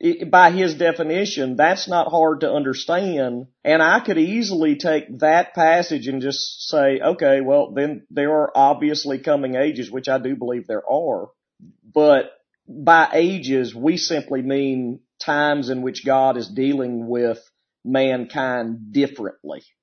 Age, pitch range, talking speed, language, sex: 40-59, 130-160 Hz, 140 wpm, English, male